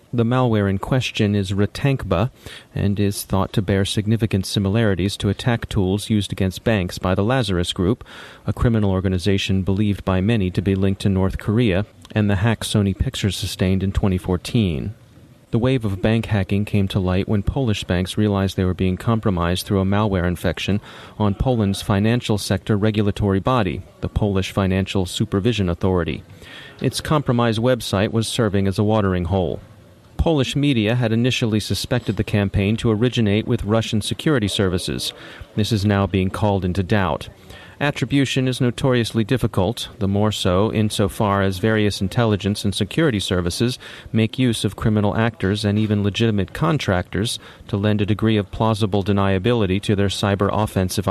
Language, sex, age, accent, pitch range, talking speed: English, male, 30-49, American, 95-115 Hz, 160 wpm